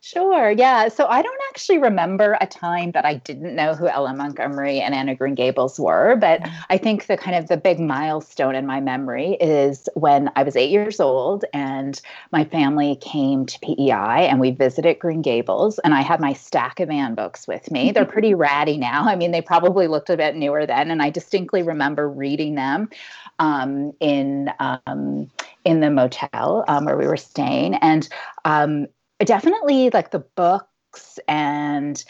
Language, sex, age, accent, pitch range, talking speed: English, female, 30-49, American, 140-175 Hz, 185 wpm